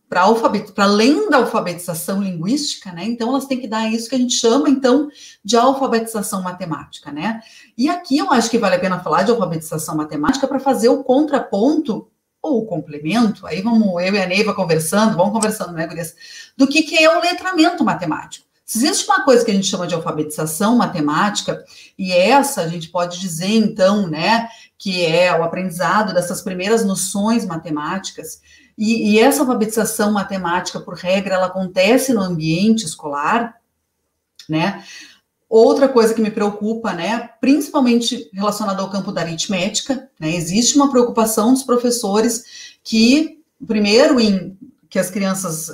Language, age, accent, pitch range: Portuguese, 40-59, Brazilian, 180-255 Hz